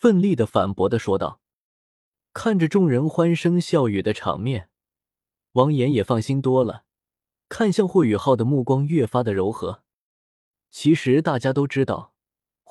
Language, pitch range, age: Chinese, 110-155 Hz, 20-39